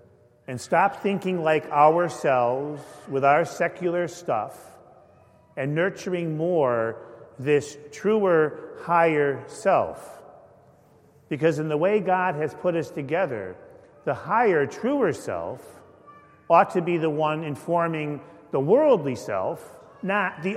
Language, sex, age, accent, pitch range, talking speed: English, male, 40-59, American, 140-175 Hz, 115 wpm